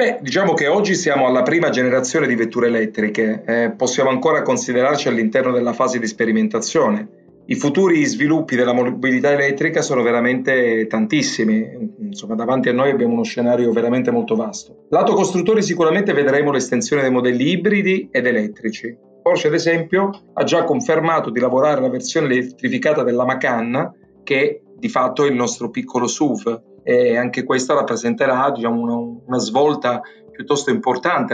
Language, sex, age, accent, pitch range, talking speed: Italian, male, 40-59, native, 125-175 Hz, 155 wpm